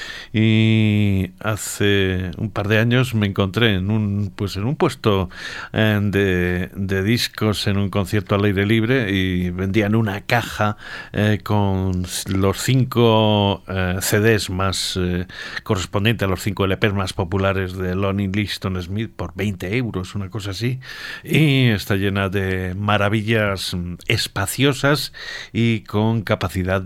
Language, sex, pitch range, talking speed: Spanish, male, 95-115 Hz, 130 wpm